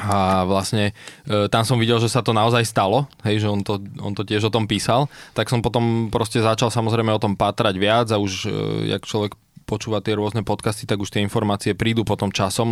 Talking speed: 210 wpm